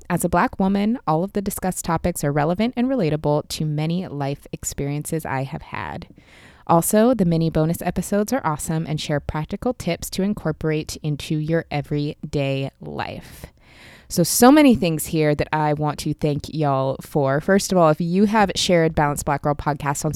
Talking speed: 180 wpm